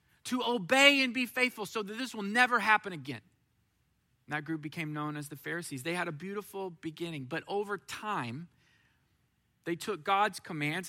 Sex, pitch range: male, 130-185 Hz